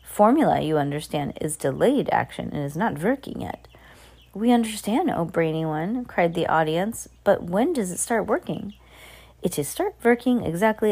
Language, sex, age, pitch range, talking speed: English, female, 30-49, 165-225 Hz, 165 wpm